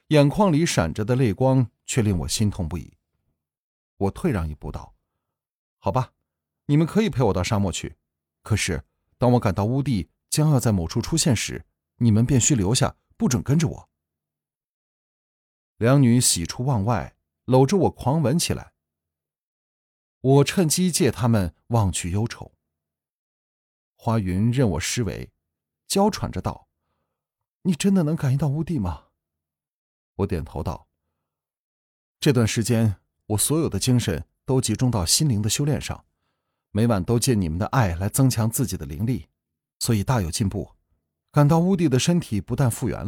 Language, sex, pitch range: Chinese, male, 80-130 Hz